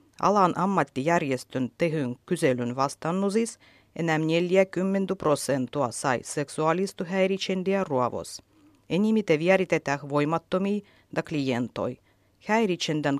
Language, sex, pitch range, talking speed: Finnish, female, 130-190 Hz, 80 wpm